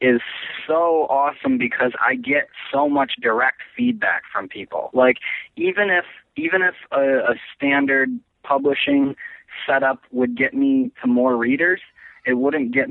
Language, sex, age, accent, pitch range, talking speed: English, male, 20-39, American, 115-140 Hz, 145 wpm